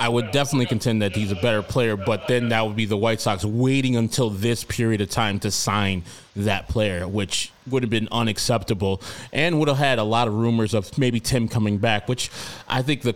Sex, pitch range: male, 100-120 Hz